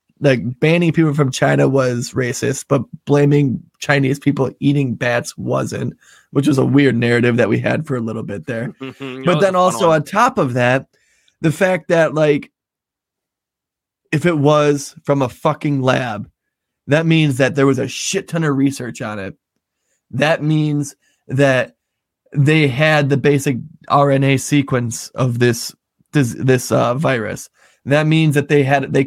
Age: 20-39